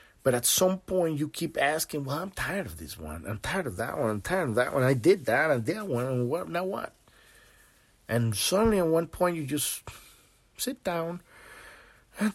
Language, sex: English, male